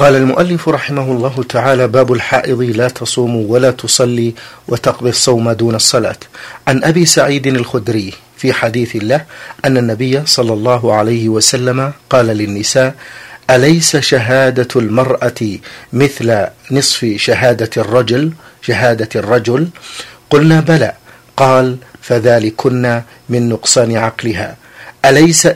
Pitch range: 115-135 Hz